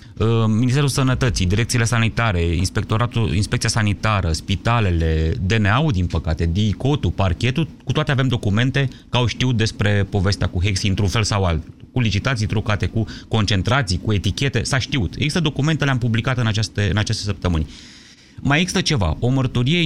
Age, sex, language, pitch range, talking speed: 30-49, male, Romanian, 95-125 Hz, 150 wpm